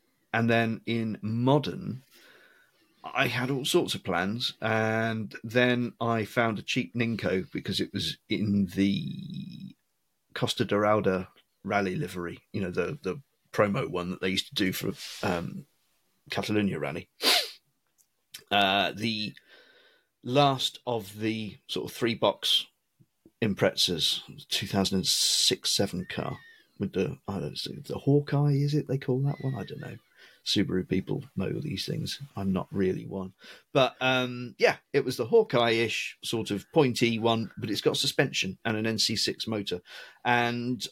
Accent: British